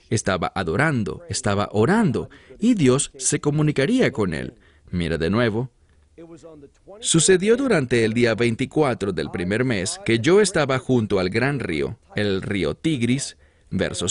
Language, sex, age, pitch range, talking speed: English, male, 40-59, 105-160 Hz, 135 wpm